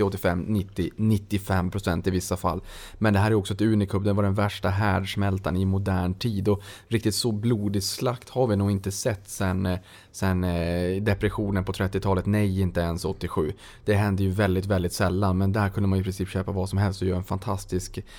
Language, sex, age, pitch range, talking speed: Swedish, male, 20-39, 95-115 Hz, 195 wpm